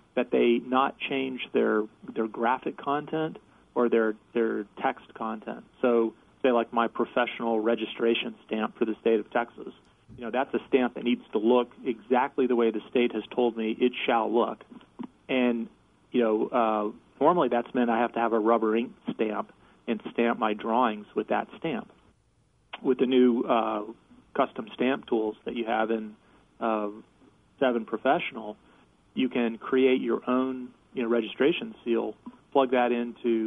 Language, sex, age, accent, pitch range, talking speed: English, male, 40-59, American, 110-125 Hz, 165 wpm